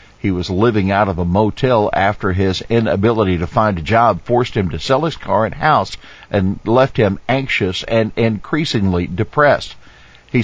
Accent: American